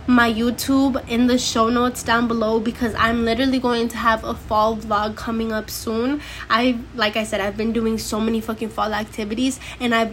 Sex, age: female, 10-29